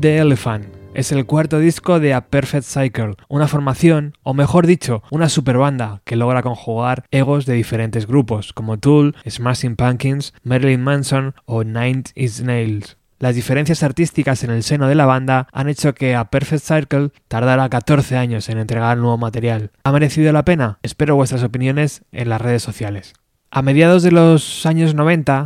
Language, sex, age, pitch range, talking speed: Spanish, male, 20-39, 120-145 Hz, 170 wpm